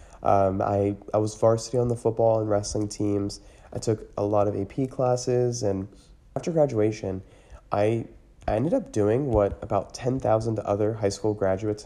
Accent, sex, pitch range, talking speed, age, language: American, male, 100-120 Hz, 170 wpm, 30-49, English